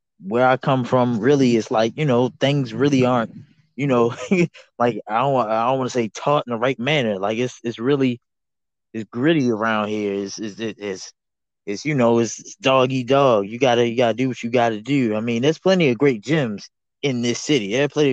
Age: 20-39